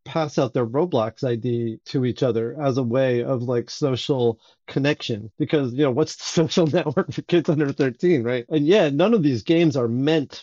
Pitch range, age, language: 125-155 Hz, 40-59, English